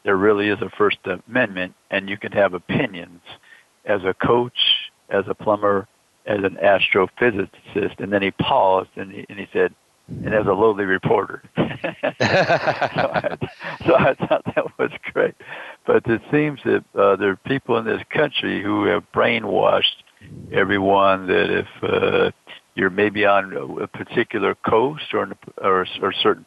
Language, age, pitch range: English, 60-79, 95-105 Hz